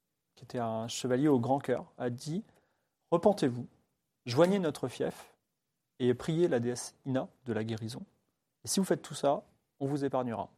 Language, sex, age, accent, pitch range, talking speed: French, male, 30-49, French, 115-145 Hz, 175 wpm